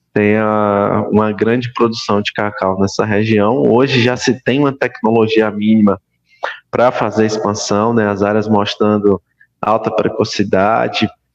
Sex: male